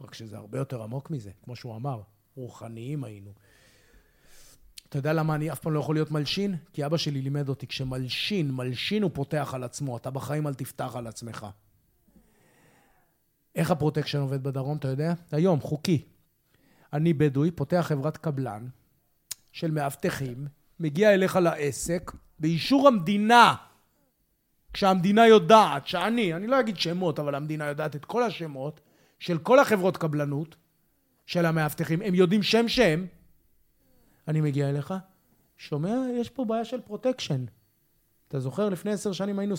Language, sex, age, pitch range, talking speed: Hebrew, male, 30-49, 130-175 Hz, 145 wpm